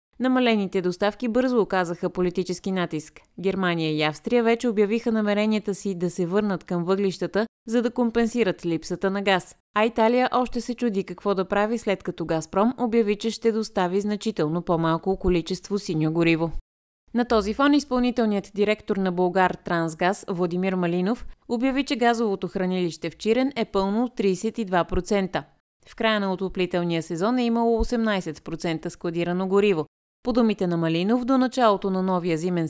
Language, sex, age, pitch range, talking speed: Bulgarian, female, 20-39, 175-225 Hz, 150 wpm